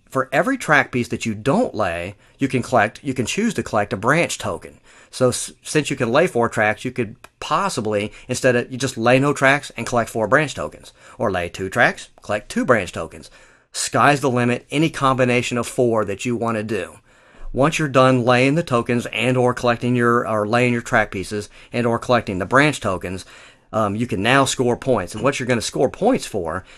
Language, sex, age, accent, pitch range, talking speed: English, male, 40-59, American, 110-130 Hz, 215 wpm